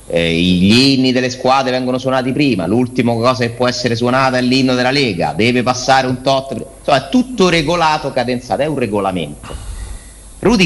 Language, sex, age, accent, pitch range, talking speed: Italian, male, 30-49, native, 85-130 Hz, 170 wpm